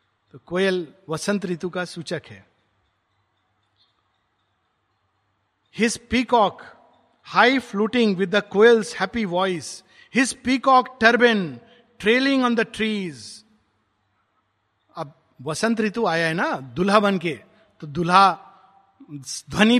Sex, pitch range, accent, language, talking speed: male, 135-215 Hz, native, Hindi, 90 wpm